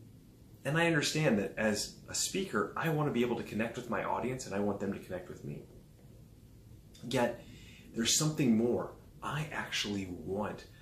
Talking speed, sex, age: 175 wpm, male, 30-49